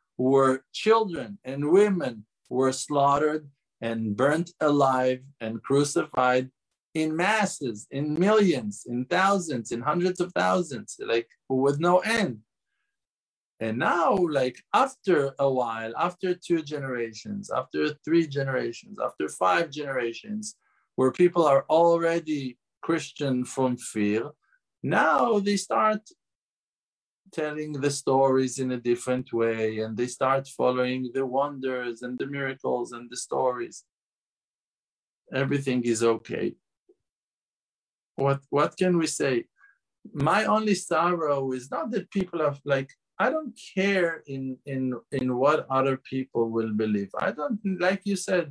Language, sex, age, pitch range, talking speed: English, male, 50-69, 125-180 Hz, 125 wpm